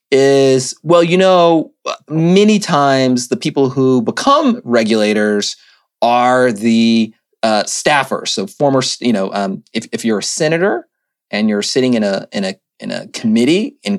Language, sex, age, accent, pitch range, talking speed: English, male, 30-49, American, 120-180 Hz, 155 wpm